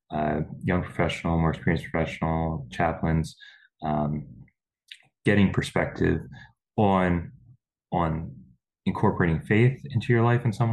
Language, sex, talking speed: English, male, 105 wpm